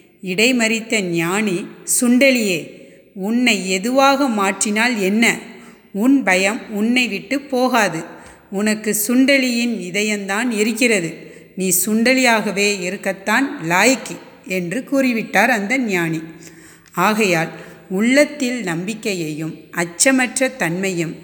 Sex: female